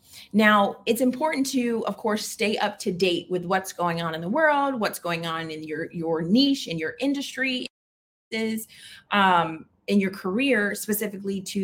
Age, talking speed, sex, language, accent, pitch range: 30-49, 170 wpm, female, English, American, 175-230 Hz